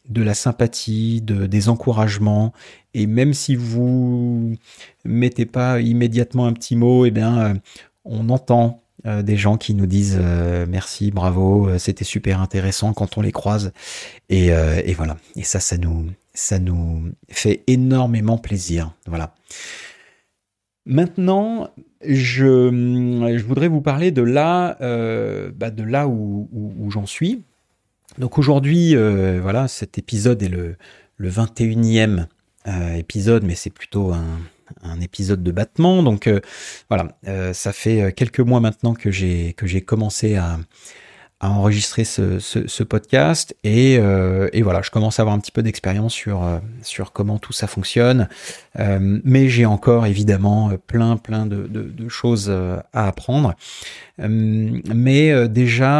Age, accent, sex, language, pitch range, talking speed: 30-49, French, male, French, 100-125 Hz, 150 wpm